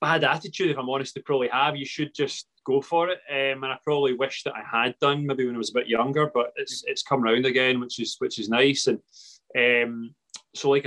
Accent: British